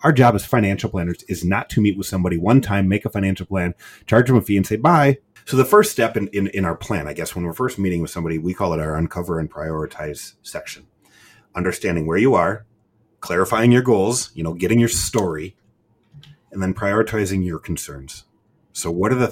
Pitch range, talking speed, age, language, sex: 85-110 Hz, 215 wpm, 30-49, English, male